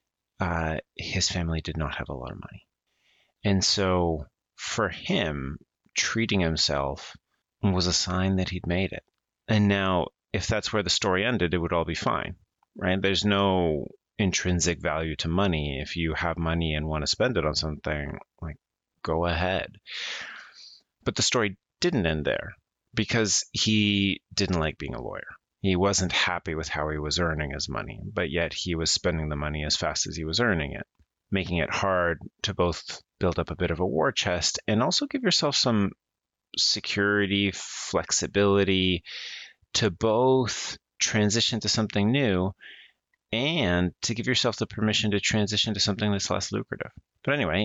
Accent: American